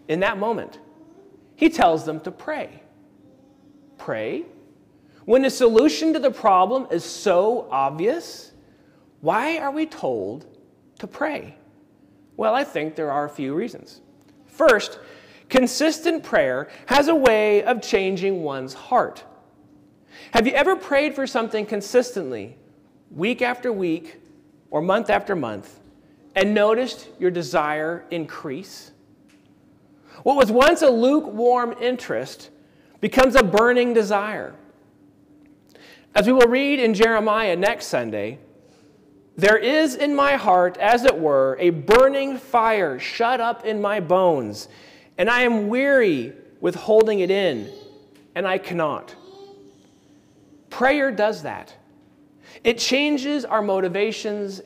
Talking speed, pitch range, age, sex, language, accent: 125 wpm, 190-275 Hz, 40-59, male, English, American